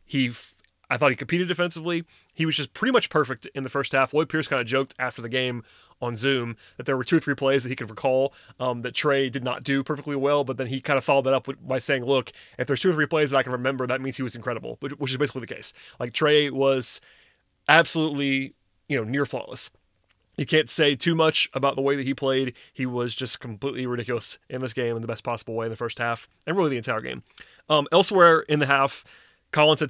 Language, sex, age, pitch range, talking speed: English, male, 30-49, 125-150 Hz, 250 wpm